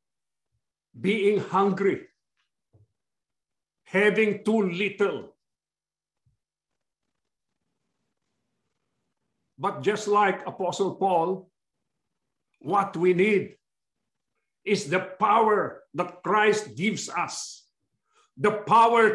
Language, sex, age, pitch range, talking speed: English, male, 50-69, 205-245 Hz, 70 wpm